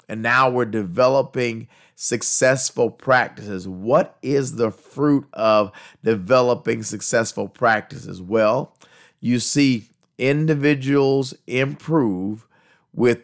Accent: American